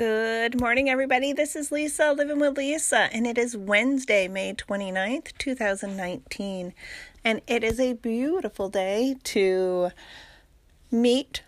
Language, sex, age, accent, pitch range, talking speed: English, female, 30-49, American, 195-255 Hz, 125 wpm